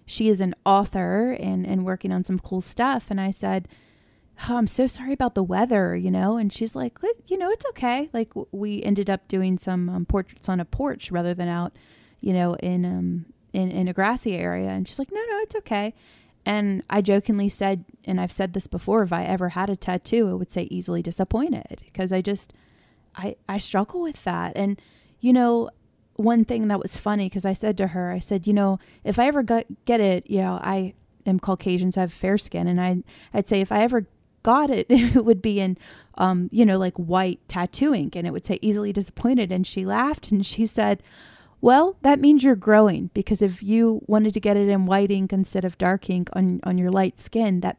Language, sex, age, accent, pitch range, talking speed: English, female, 20-39, American, 185-225 Hz, 225 wpm